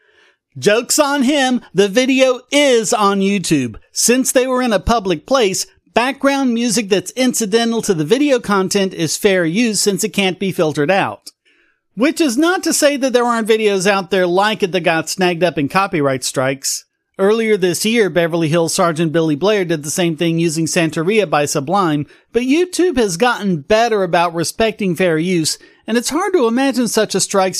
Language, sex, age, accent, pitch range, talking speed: English, male, 40-59, American, 165-230 Hz, 185 wpm